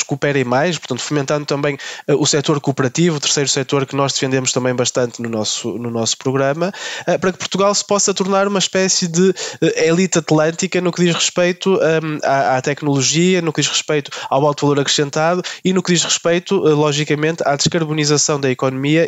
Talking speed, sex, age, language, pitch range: 195 wpm, male, 20-39, Portuguese, 135-170 Hz